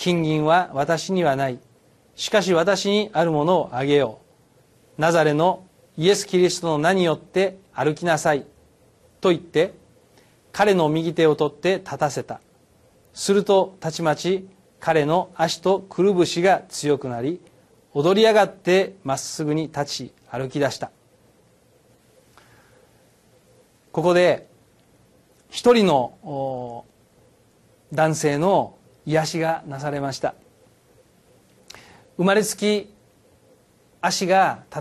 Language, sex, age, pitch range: Japanese, male, 40-59, 145-190 Hz